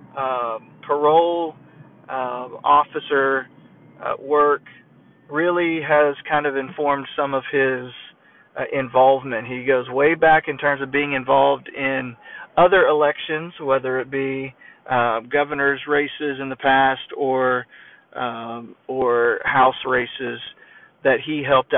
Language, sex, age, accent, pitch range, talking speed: English, male, 40-59, American, 130-155 Hz, 125 wpm